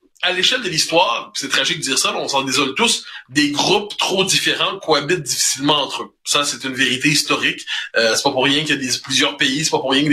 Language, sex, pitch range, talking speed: French, male, 145-230 Hz, 250 wpm